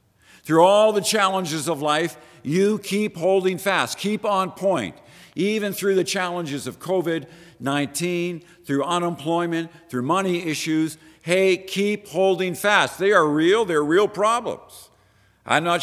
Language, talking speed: English, 135 wpm